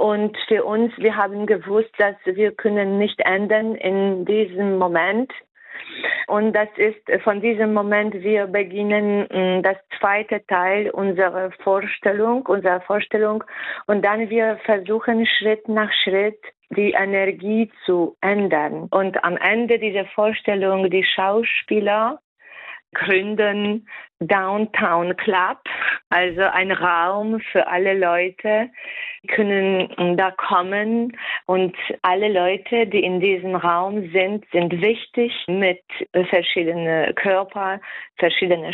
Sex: female